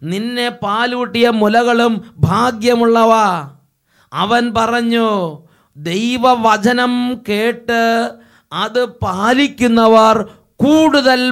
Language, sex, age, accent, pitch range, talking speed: English, male, 30-49, Indian, 205-250 Hz, 75 wpm